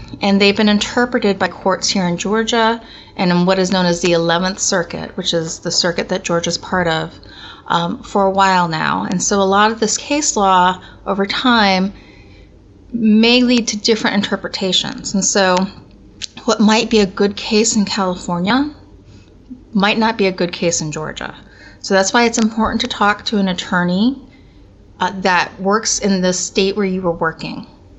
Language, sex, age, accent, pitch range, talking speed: English, female, 30-49, American, 170-205 Hz, 180 wpm